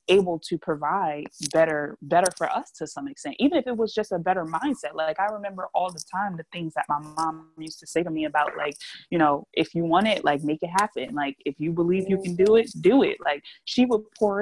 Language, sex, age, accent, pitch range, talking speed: English, female, 20-39, American, 155-190 Hz, 250 wpm